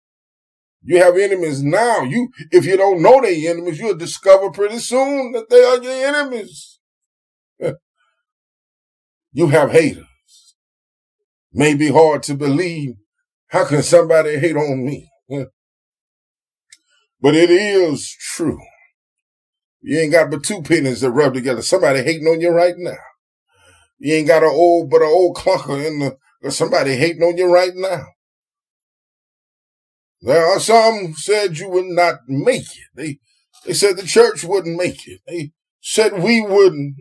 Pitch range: 160-225 Hz